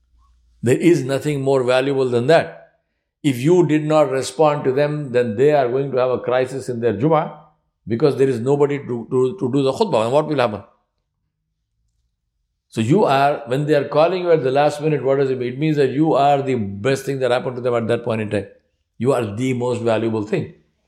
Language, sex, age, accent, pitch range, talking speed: English, male, 60-79, Indian, 95-135 Hz, 225 wpm